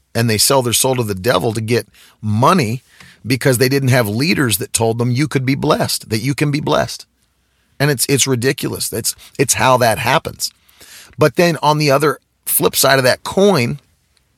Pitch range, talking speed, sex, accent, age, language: 105-135 Hz, 195 wpm, male, American, 40-59, English